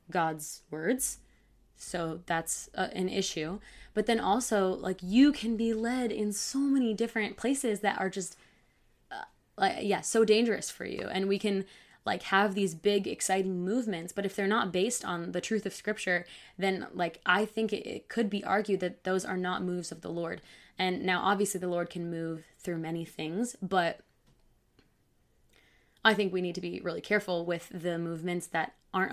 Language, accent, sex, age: English, American, female, 20-39